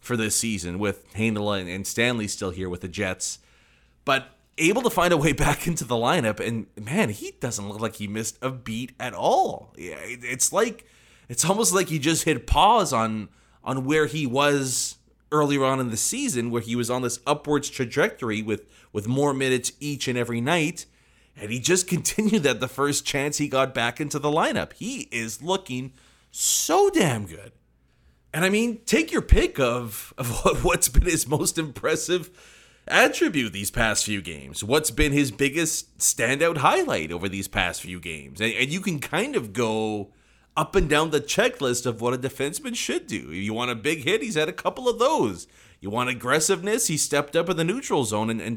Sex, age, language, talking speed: male, 30-49, English, 200 wpm